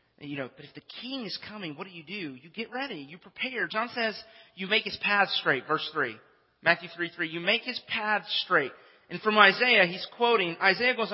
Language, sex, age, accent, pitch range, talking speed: English, male, 30-49, American, 155-220 Hz, 220 wpm